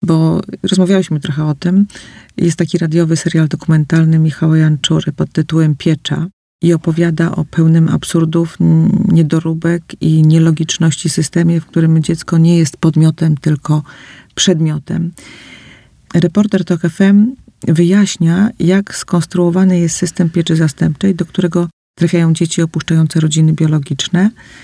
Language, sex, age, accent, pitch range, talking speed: Polish, female, 40-59, native, 160-185 Hz, 115 wpm